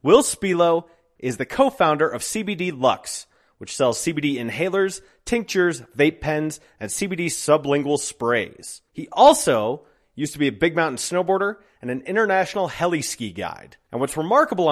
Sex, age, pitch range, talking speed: male, 30-49, 130-185 Hz, 145 wpm